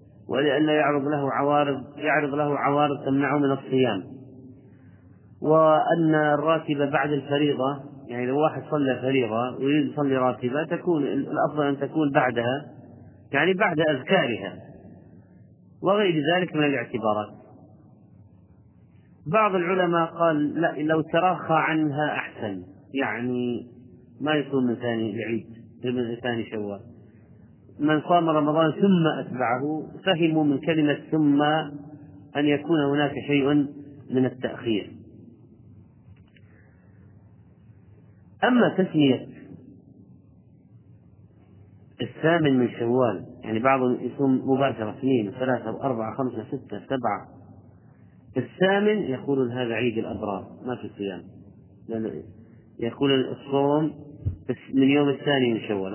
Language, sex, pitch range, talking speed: Arabic, male, 110-150 Hz, 105 wpm